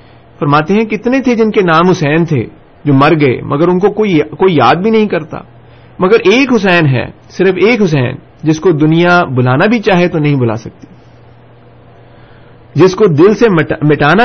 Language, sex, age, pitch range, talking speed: Urdu, male, 40-59, 130-180 Hz, 185 wpm